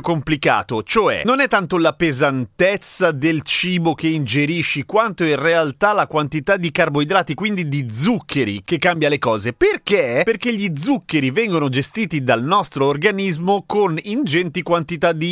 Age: 30-49